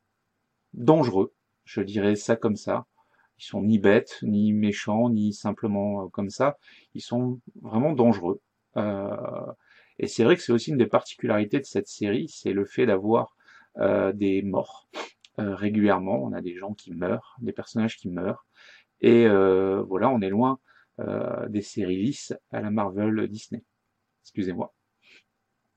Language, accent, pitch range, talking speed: French, French, 100-120 Hz, 155 wpm